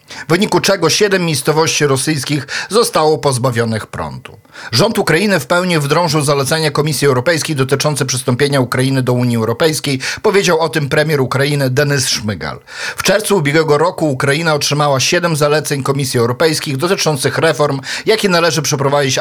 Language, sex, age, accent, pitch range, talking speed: Polish, male, 50-69, native, 135-165 Hz, 140 wpm